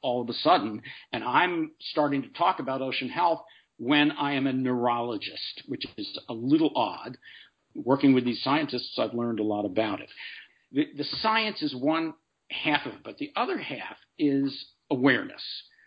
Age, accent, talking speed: 50-69, American, 175 wpm